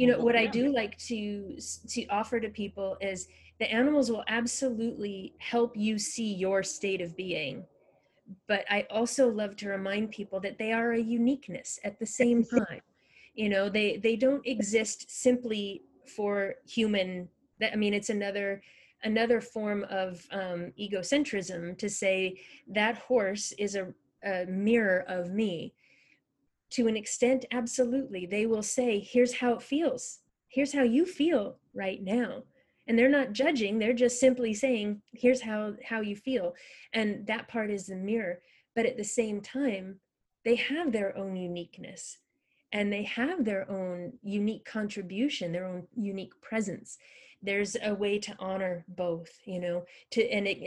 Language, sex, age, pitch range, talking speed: English, female, 30-49, 195-240 Hz, 160 wpm